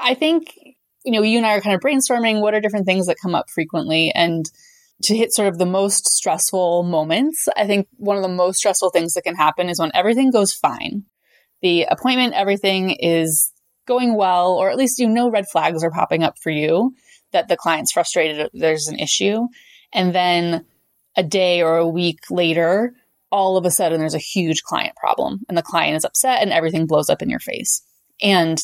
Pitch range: 170-215 Hz